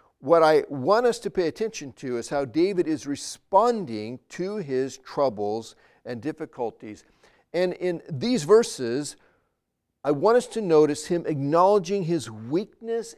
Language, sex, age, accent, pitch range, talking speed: English, male, 50-69, American, 155-225 Hz, 140 wpm